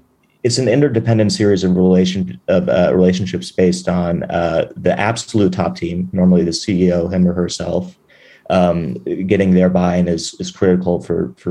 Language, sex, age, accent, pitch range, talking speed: English, male, 30-49, American, 90-100 Hz, 160 wpm